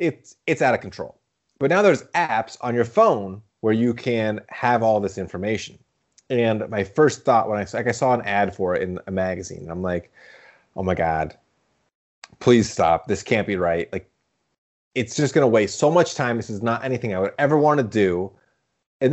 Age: 30-49